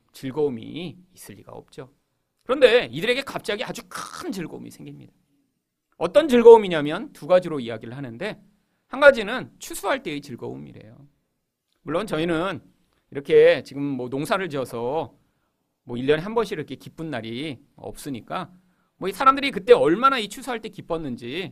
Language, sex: Korean, male